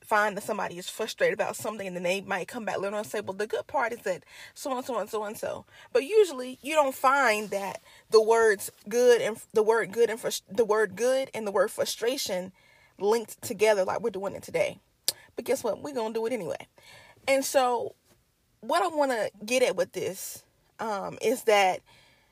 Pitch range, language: 210-275 Hz, English